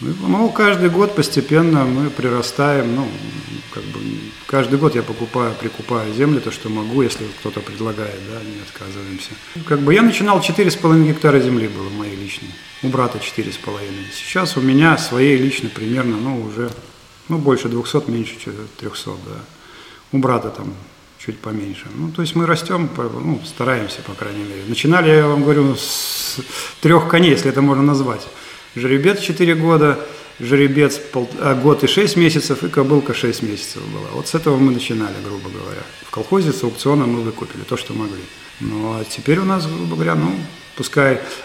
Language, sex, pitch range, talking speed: Russian, male, 115-155 Hz, 170 wpm